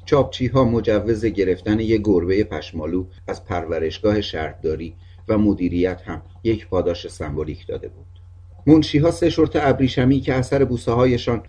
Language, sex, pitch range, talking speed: Persian, male, 90-120 Hz, 135 wpm